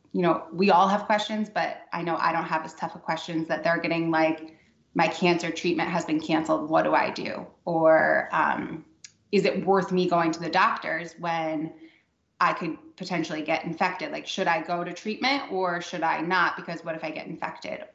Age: 20-39